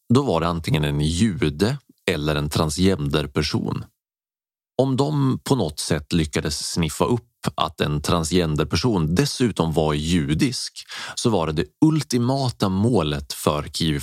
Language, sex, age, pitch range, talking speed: Swedish, male, 30-49, 75-100 Hz, 135 wpm